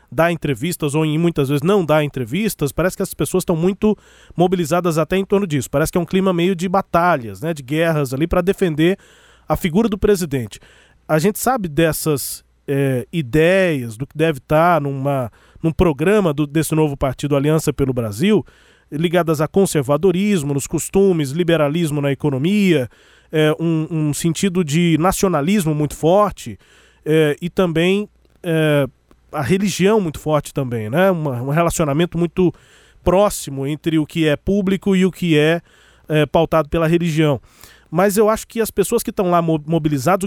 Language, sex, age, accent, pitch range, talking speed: Portuguese, male, 20-39, Brazilian, 155-190 Hz, 165 wpm